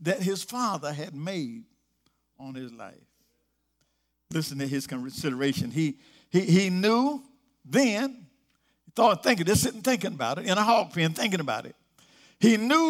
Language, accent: English, American